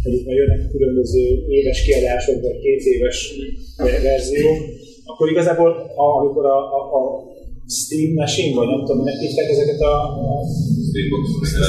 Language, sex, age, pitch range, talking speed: Hungarian, male, 30-49, 130-210 Hz, 120 wpm